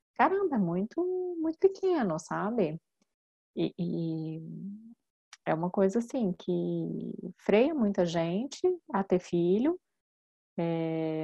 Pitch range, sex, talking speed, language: 175-220 Hz, female, 105 wpm, Portuguese